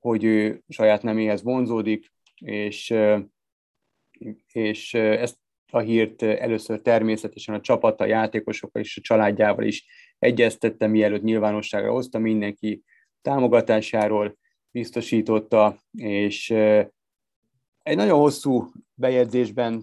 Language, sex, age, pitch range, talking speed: Hungarian, male, 30-49, 105-115 Hz, 95 wpm